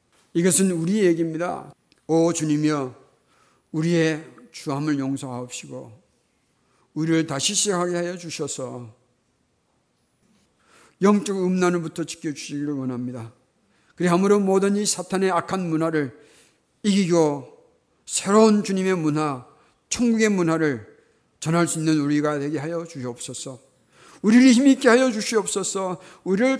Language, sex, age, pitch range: Korean, male, 50-69, 155-215 Hz